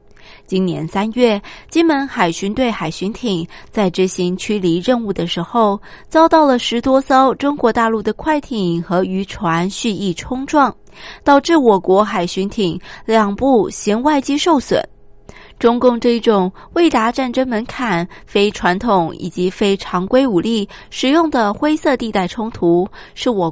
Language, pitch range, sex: Japanese, 185-255 Hz, female